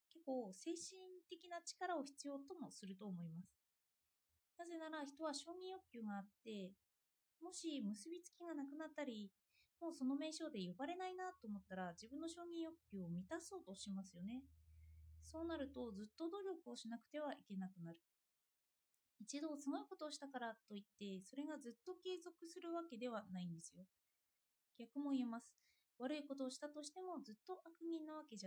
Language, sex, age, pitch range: Japanese, female, 20-39, 200-320 Hz